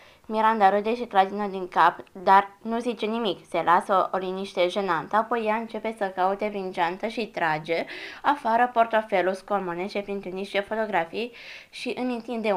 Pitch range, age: 175-225 Hz, 20-39